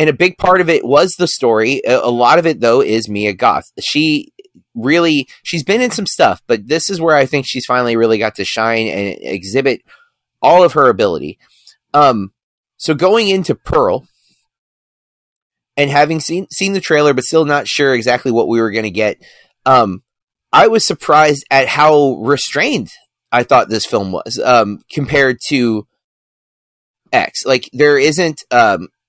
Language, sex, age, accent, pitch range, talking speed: English, male, 30-49, American, 115-165 Hz, 175 wpm